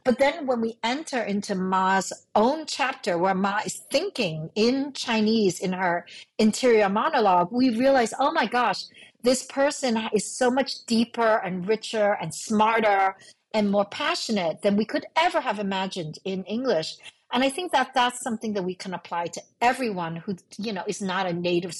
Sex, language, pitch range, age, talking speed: female, English, 195-255 Hz, 50-69, 175 wpm